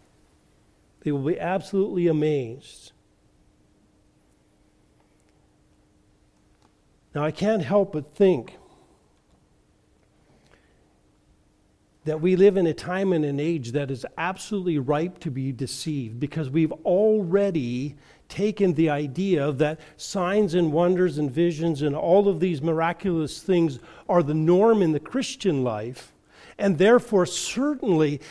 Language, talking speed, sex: English, 115 wpm, male